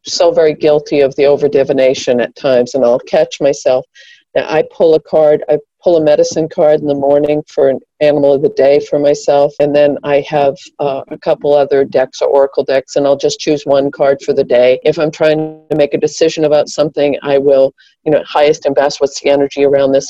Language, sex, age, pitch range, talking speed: English, female, 50-69, 140-155 Hz, 225 wpm